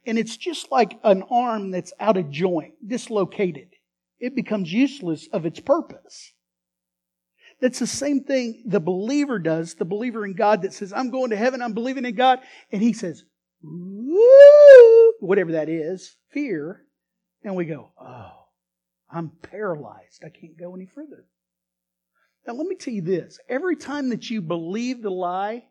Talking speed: 165 wpm